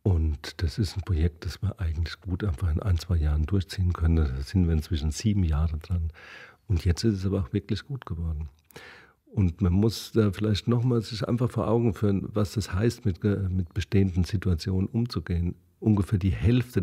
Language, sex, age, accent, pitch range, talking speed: German, male, 50-69, German, 90-110 Hz, 195 wpm